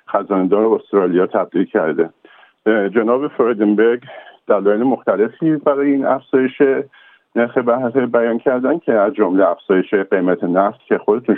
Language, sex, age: Persian, male, 50-69